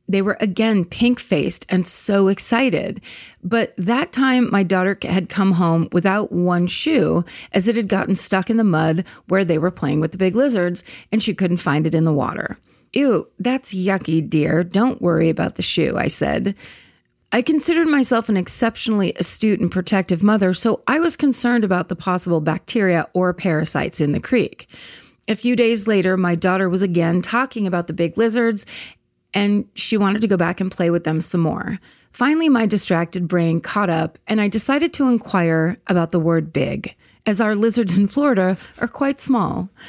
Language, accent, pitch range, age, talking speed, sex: English, American, 180-235 Hz, 30-49, 185 wpm, female